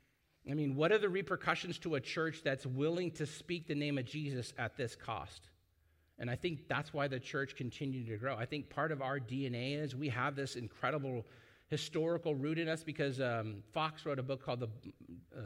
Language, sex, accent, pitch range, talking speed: English, male, American, 120-150 Hz, 210 wpm